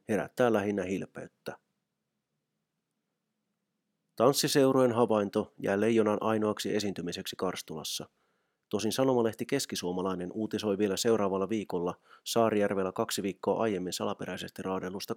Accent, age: native, 30-49